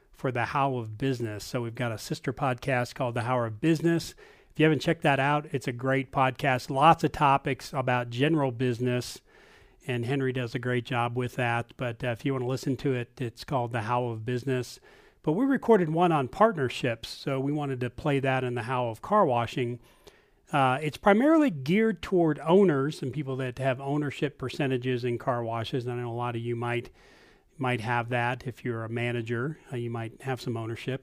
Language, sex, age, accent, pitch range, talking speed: English, male, 40-59, American, 125-150 Hz, 205 wpm